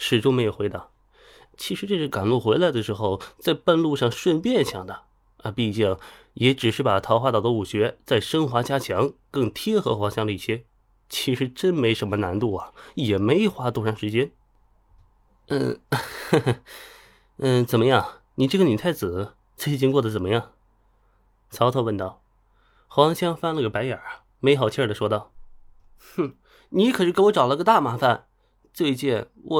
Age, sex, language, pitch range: 20-39, male, Chinese, 105-165 Hz